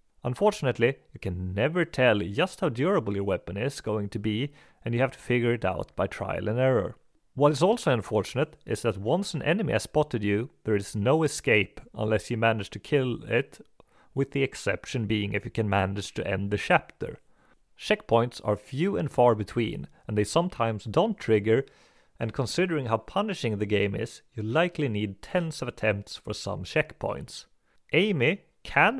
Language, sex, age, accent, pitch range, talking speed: English, male, 30-49, Swedish, 105-135 Hz, 180 wpm